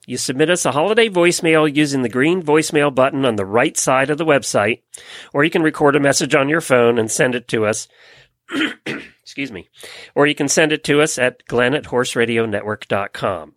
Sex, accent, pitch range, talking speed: male, American, 125-170 Hz, 190 wpm